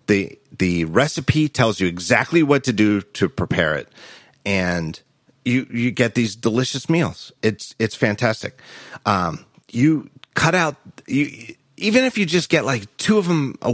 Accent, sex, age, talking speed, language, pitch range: American, male, 40-59, 165 wpm, English, 100-145 Hz